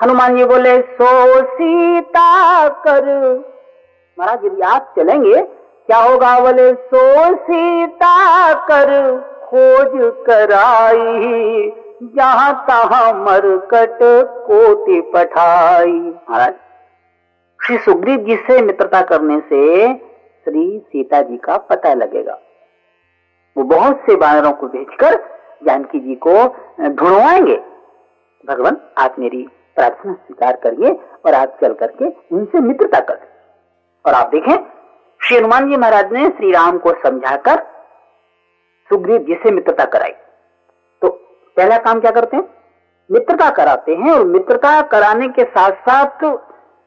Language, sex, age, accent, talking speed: Hindi, female, 50-69, native, 105 wpm